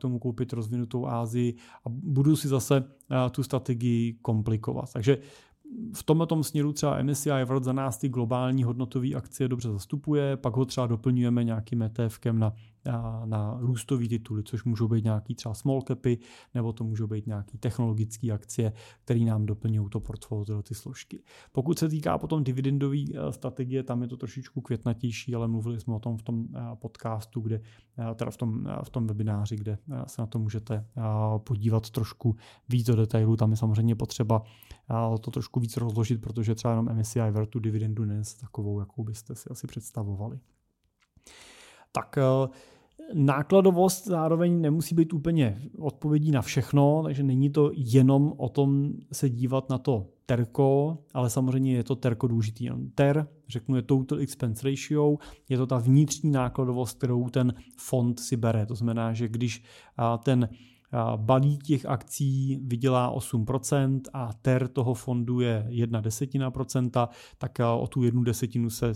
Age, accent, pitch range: 30-49, native, 115-135 Hz